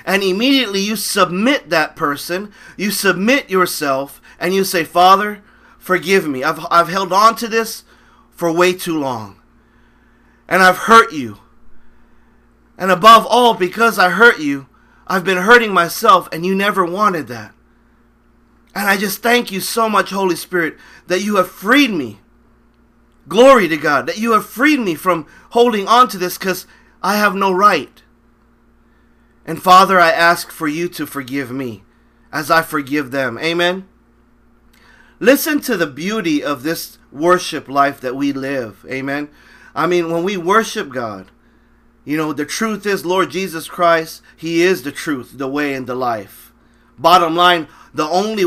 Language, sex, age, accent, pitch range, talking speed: English, male, 30-49, American, 155-200 Hz, 160 wpm